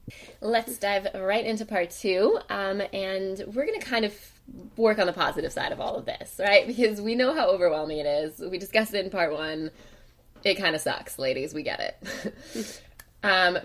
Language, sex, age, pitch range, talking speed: English, female, 20-39, 165-230 Hz, 200 wpm